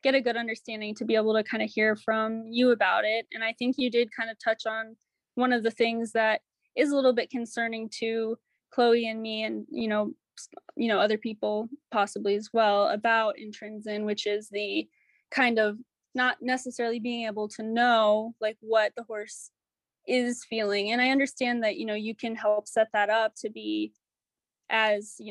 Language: English